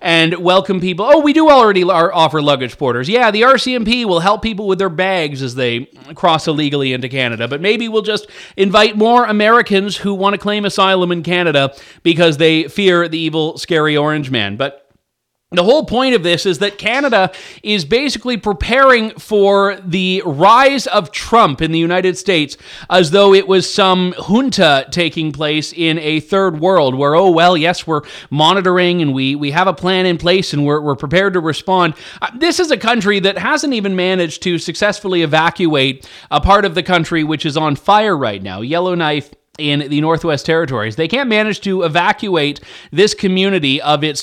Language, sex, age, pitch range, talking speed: English, male, 30-49, 155-200 Hz, 185 wpm